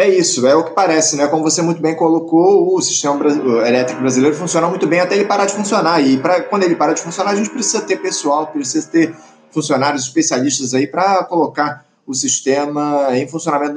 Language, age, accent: Portuguese, 20-39, Brazilian